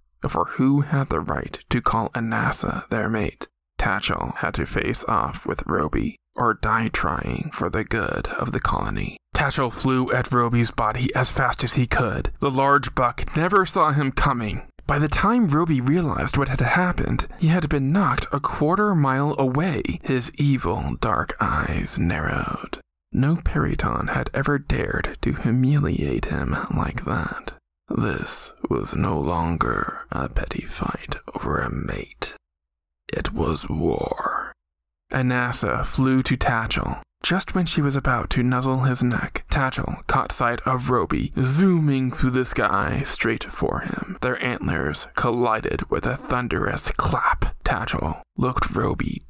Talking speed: 150 wpm